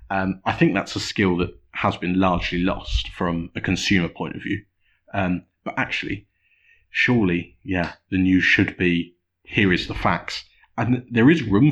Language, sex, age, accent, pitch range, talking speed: English, male, 30-49, British, 90-105 Hz, 175 wpm